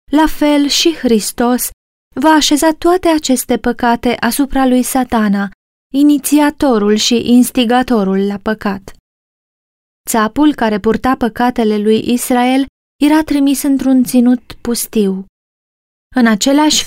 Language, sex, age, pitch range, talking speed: Romanian, female, 20-39, 225-280 Hz, 105 wpm